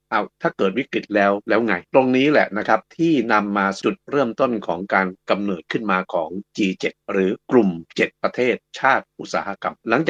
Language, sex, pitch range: Thai, male, 95-120 Hz